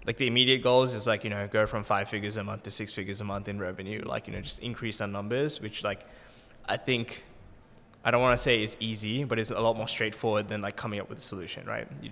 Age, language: 20-39, English